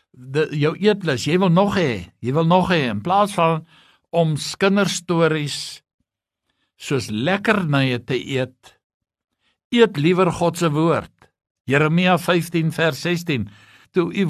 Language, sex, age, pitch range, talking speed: English, male, 60-79, 135-180 Hz, 135 wpm